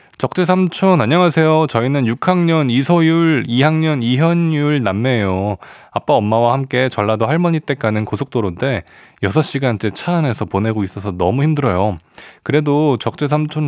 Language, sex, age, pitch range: Korean, male, 20-39, 105-150 Hz